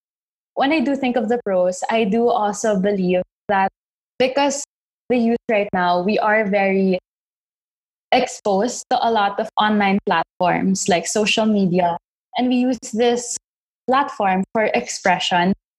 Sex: female